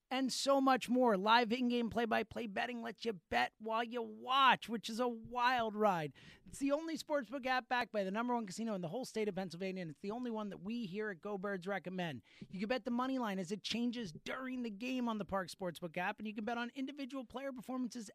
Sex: male